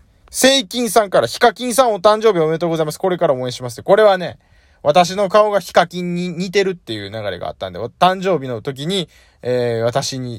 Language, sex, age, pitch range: Japanese, male, 20-39, 125-200 Hz